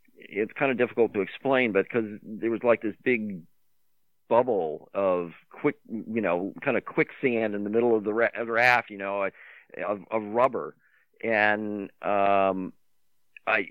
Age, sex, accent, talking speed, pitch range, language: 40-59, male, American, 150 wpm, 90-115 Hz, English